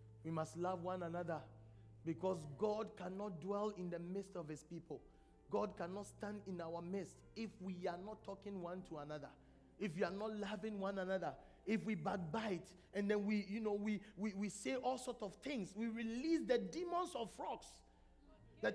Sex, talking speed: male, 190 wpm